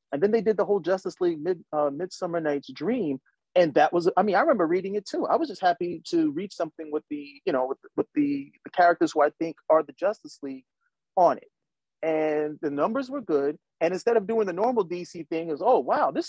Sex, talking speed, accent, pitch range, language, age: male, 230 wpm, American, 160-230 Hz, English, 30-49